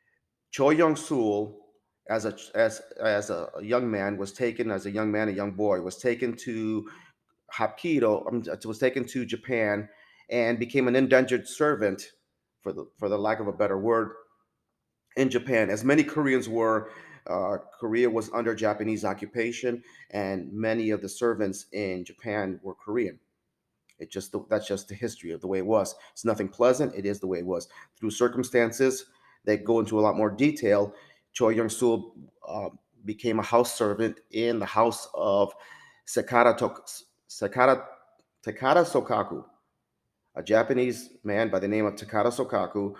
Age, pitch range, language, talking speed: 30-49, 105-120 Hz, English, 160 wpm